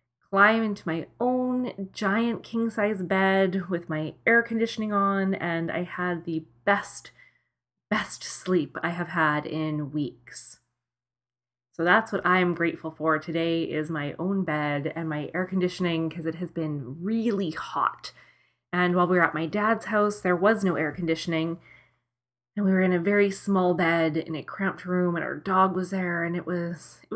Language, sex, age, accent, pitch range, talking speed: English, female, 20-39, American, 145-200 Hz, 175 wpm